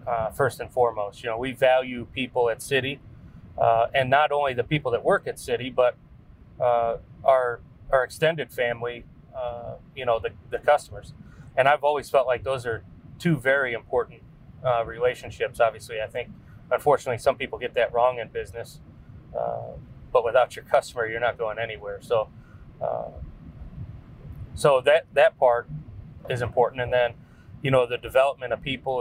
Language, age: English, 30-49